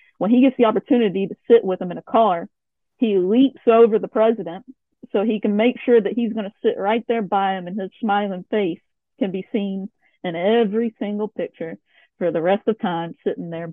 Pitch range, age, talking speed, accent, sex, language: 195-240 Hz, 40-59, 215 wpm, American, female, English